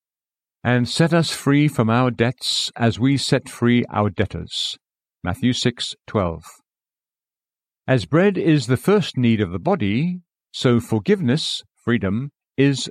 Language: English